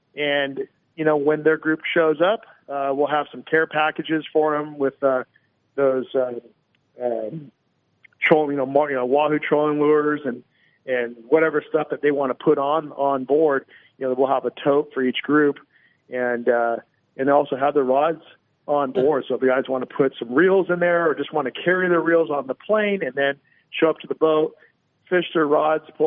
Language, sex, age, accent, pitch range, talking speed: English, male, 40-59, American, 130-155 Hz, 210 wpm